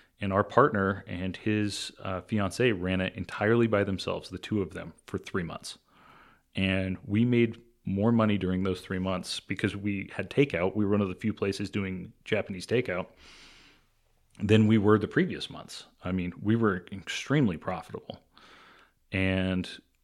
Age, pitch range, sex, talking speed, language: 30-49, 90-105 Hz, male, 165 wpm, English